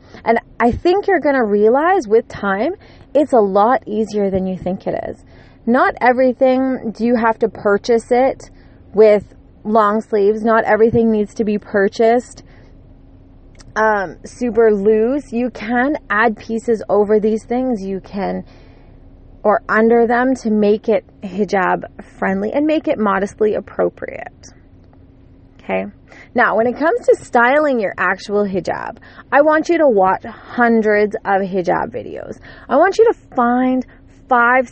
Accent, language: American, English